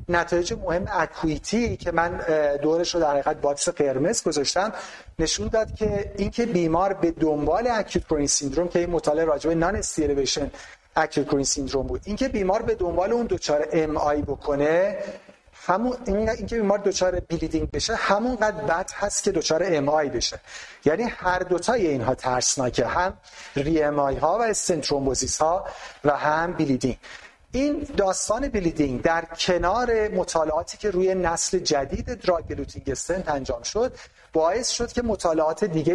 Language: Persian